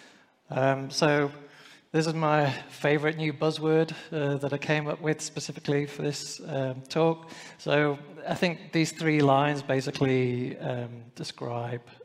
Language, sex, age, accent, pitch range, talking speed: English, male, 30-49, British, 130-150 Hz, 140 wpm